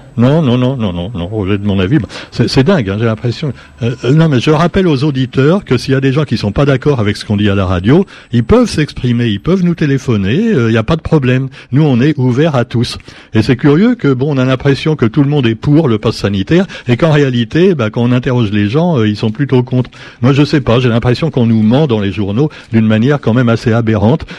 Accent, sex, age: French, male, 60-79